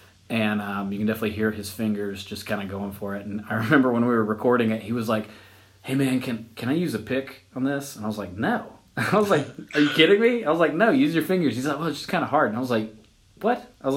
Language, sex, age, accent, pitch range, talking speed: English, male, 30-49, American, 105-125 Hz, 295 wpm